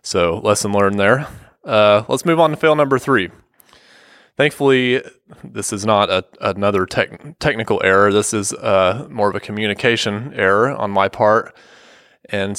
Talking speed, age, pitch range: 155 wpm, 20-39, 95-115 Hz